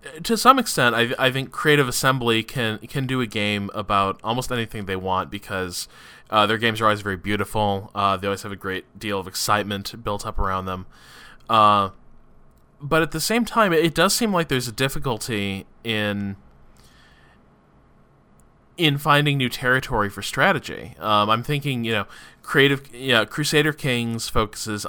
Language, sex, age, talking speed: English, male, 20-39, 170 wpm